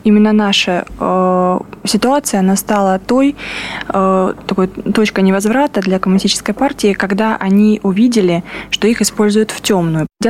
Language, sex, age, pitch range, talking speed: Russian, female, 20-39, 195-230 Hz, 120 wpm